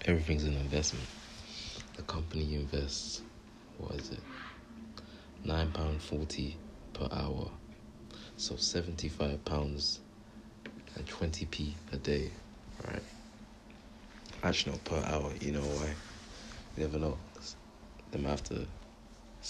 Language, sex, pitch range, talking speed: English, male, 75-90 Hz, 115 wpm